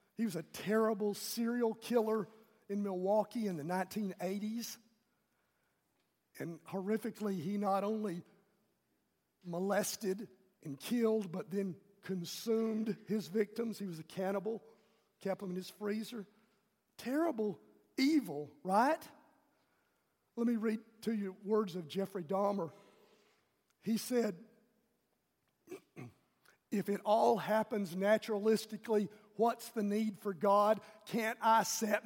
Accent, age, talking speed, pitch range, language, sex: American, 50-69, 110 wpm, 200-240 Hz, English, male